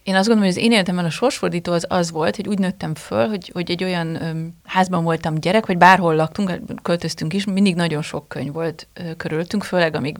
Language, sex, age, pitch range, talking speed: Hungarian, female, 30-49, 160-200 Hz, 220 wpm